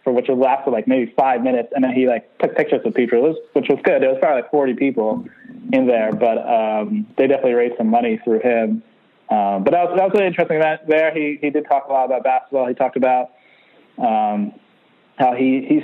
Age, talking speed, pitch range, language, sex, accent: 20-39, 230 wpm, 120-155 Hz, English, male, American